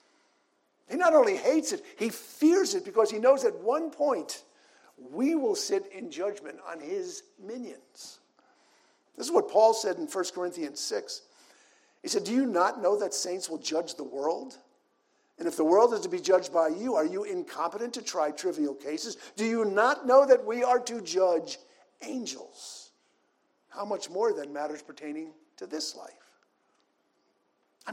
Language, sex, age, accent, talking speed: English, male, 50-69, American, 170 wpm